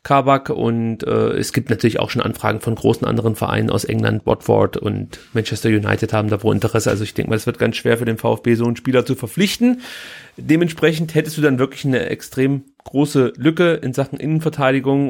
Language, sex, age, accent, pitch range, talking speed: German, male, 30-49, German, 120-145 Hz, 200 wpm